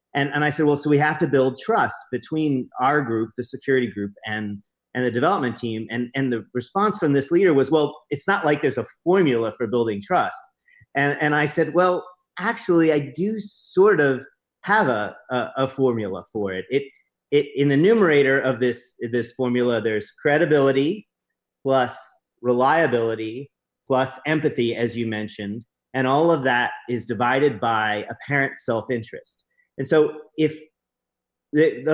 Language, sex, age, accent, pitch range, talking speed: English, male, 40-59, American, 115-155 Hz, 165 wpm